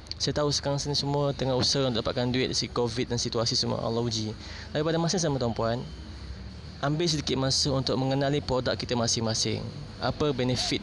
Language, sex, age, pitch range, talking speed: Malay, male, 20-39, 120-140 Hz, 185 wpm